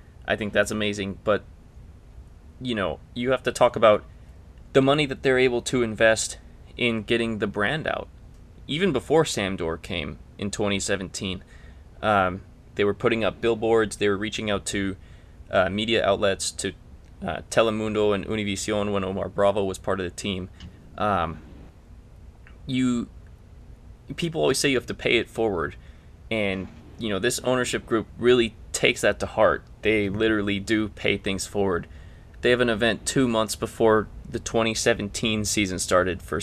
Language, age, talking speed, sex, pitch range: English, 20-39, 160 wpm, male, 90-115 Hz